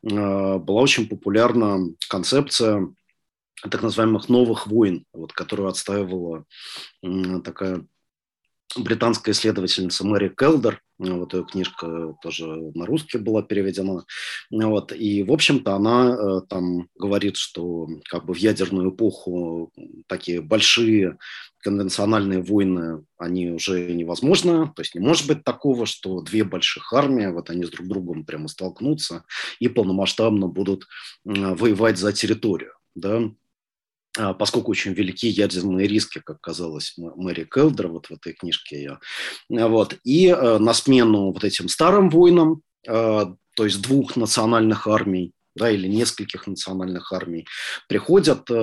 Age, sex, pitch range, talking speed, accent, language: 30-49, male, 90-115 Hz, 125 wpm, native, Russian